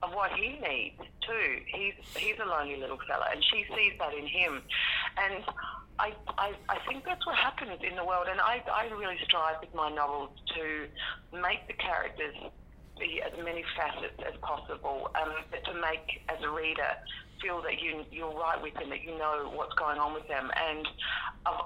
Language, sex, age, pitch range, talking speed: English, female, 40-59, 150-190 Hz, 195 wpm